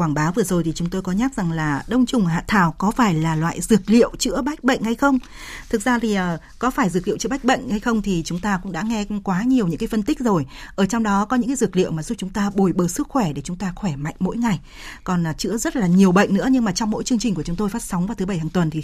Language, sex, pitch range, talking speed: Vietnamese, female, 180-235 Hz, 320 wpm